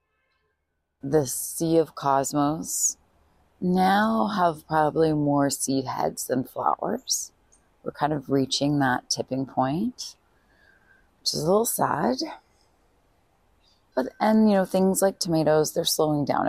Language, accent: English, American